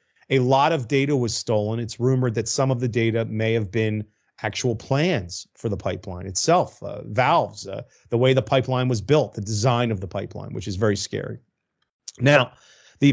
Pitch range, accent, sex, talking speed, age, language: 110-135 Hz, American, male, 190 wpm, 40-59, English